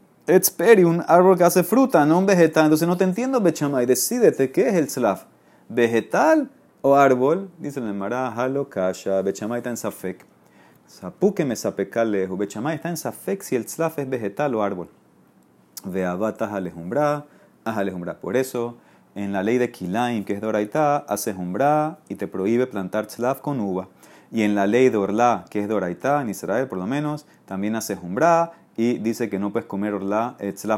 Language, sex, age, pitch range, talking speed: Spanish, male, 30-49, 100-150 Hz, 175 wpm